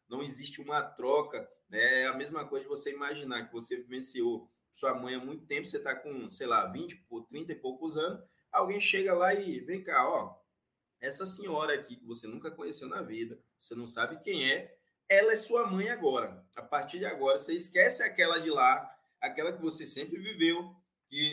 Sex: male